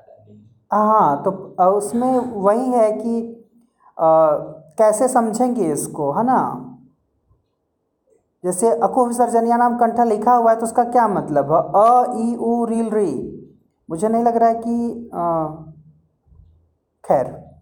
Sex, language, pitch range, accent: male, Hindi, 155-230 Hz, native